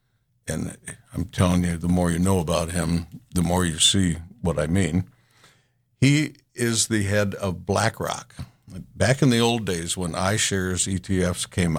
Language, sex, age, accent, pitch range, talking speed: English, male, 60-79, American, 95-125 Hz, 165 wpm